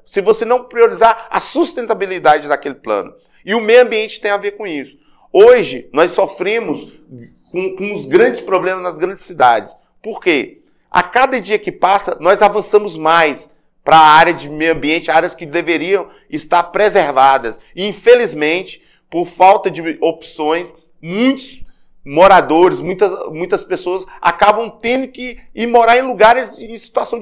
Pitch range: 165-215 Hz